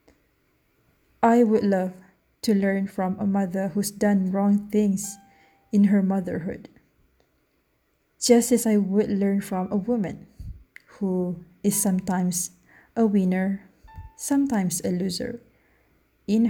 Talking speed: 115 wpm